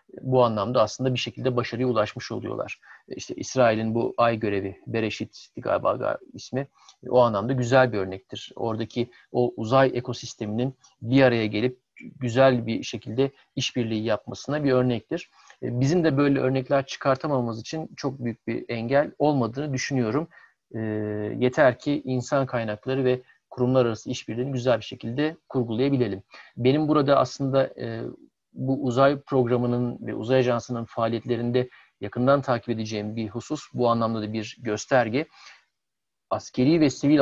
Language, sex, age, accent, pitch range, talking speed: Turkish, male, 50-69, native, 115-130 Hz, 135 wpm